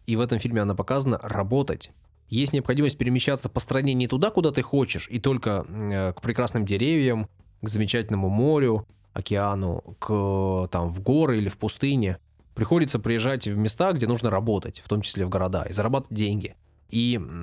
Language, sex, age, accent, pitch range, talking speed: Russian, male, 20-39, native, 100-130 Hz, 170 wpm